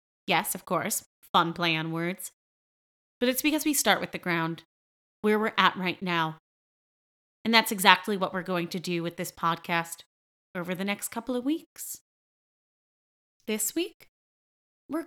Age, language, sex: 30-49, English, female